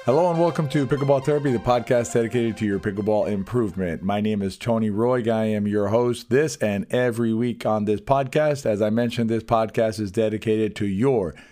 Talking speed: 200 wpm